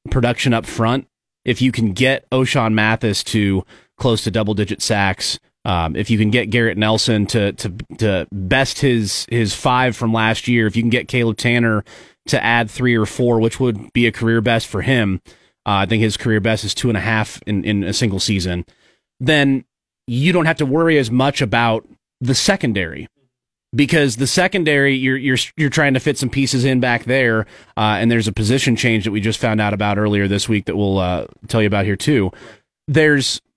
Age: 30-49